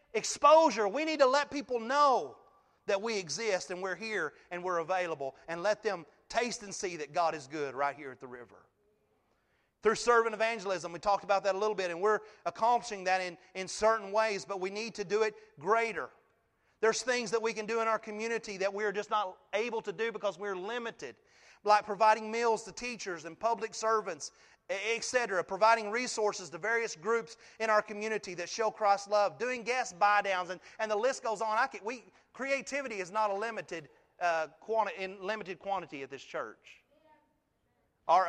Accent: American